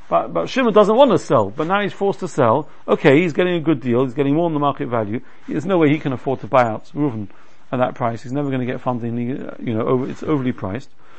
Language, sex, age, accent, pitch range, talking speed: English, male, 50-69, British, 135-180 Hz, 275 wpm